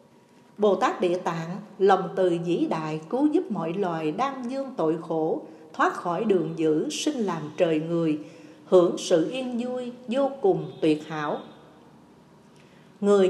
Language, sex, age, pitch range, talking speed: Vietnamese, female, 60-79, 165-245 Hz, 150 wpm